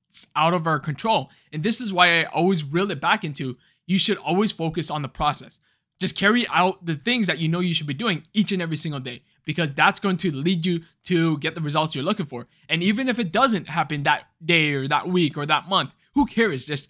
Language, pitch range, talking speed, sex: English, 150-195 Hz, 245 wpm, male